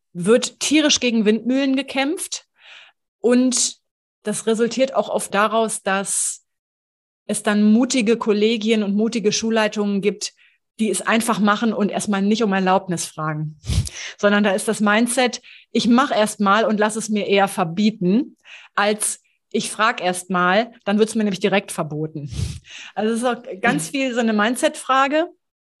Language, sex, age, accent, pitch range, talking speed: German, female, 30-49, German, 195-240 Hz, 150 wpm